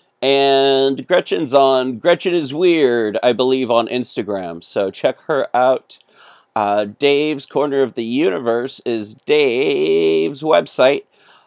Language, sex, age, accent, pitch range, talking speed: English, male, 40-59, American, 120-155 Hz, 120 wpm